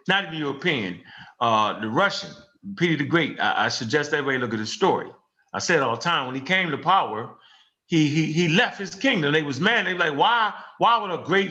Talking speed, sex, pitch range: 230 wpm, male, 150-190 Hz